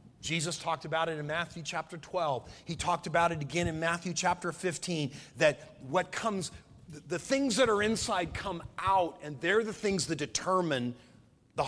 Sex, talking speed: male, 175 wpm